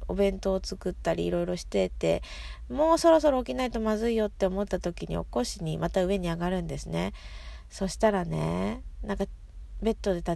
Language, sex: Japanese, female